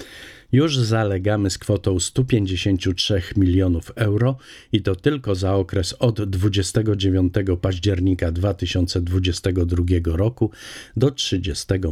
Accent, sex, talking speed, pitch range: native, male, 95 wpm, 90-115 Hz